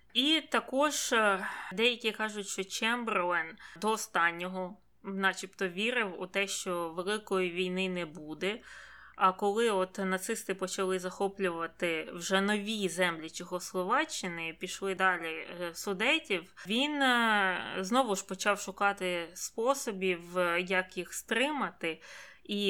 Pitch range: 185-225 Hz